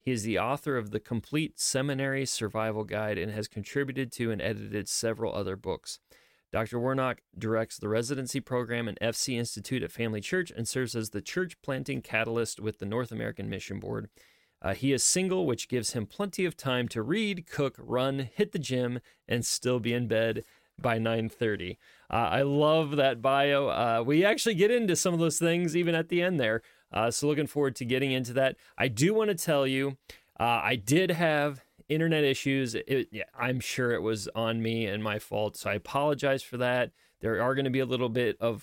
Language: English